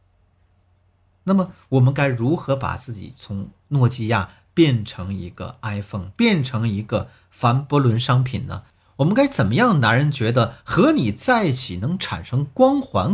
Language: Chinese